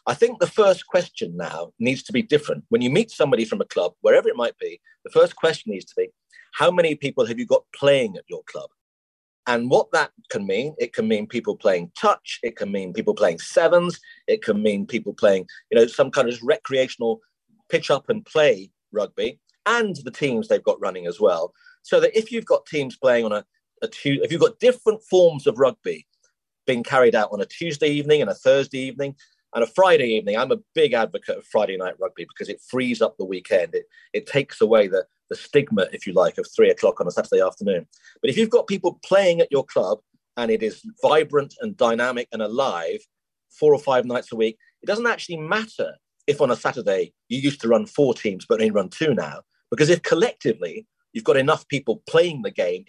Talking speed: 220 wpm